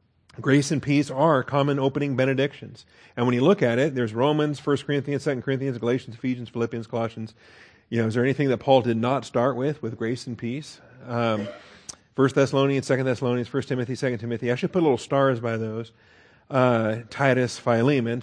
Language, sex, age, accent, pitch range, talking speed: English, male, 40-59, American, 110-135 Hz, 190 wpm